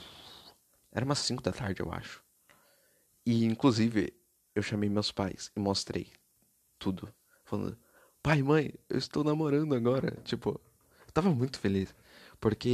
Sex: male